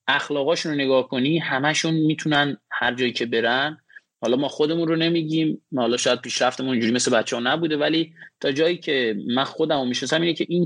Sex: male